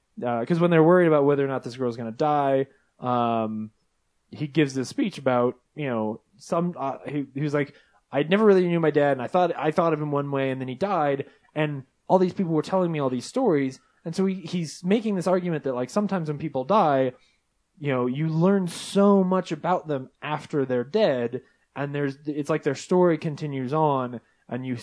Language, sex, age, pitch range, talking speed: English, male, 20-39, 130-170 Hz, 220 wpm